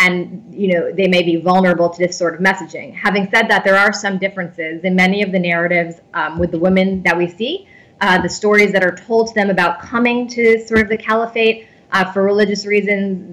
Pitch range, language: 175-195 Hz, English